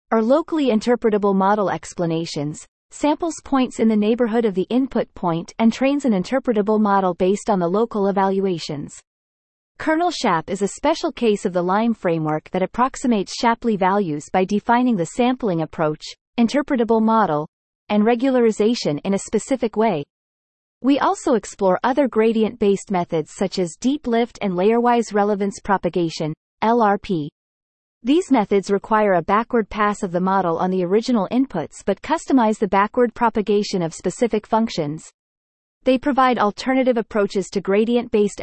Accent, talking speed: American, 145 wpm